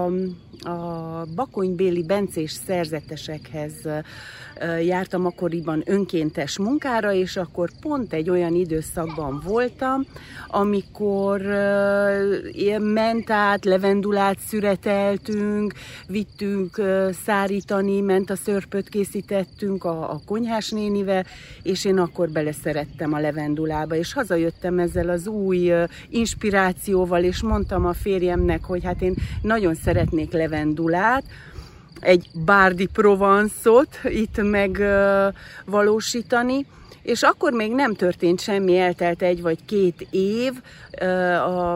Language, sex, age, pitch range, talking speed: Hungarian, female, 40-59, 170-210 Hz, 100 wpm